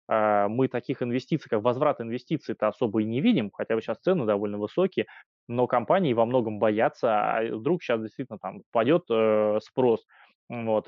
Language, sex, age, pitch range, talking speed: Russian, male, 20-39, 110-135 Hz, 165 wpm